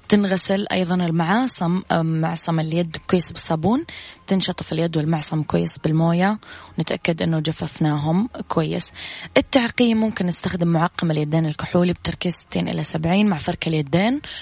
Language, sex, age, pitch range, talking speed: Arabic, female, 20-39, 160-180 Hz, 120 wpm